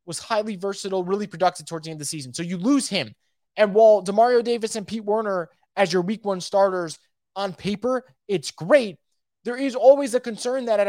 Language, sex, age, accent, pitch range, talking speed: English, male, 20-39, American, 180-230 Hz, 210 wpm